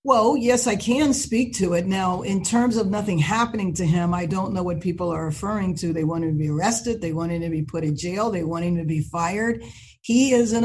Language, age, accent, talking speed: English, 50-69, American, 260 wpm